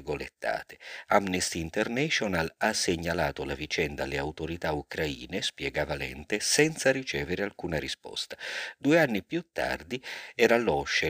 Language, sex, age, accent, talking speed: Italian, male, 50-69, native, 115 wpm